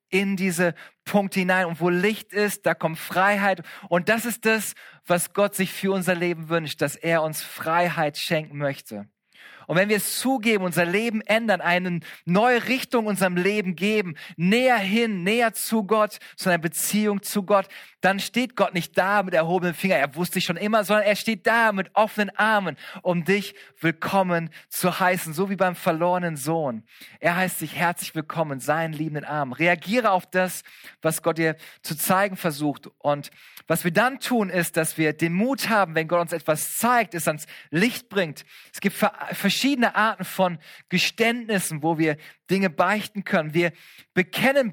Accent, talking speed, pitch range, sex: German, 180 wpm, 170-210 Hz, male